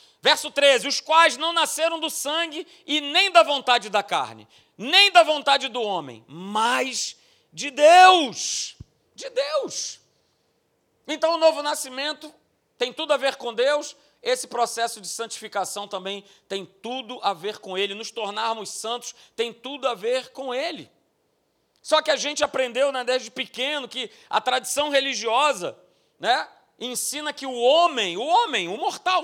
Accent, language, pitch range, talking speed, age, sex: Brazilian, Portuguese, 225-295 Hz, 155 wpm, 40-59, male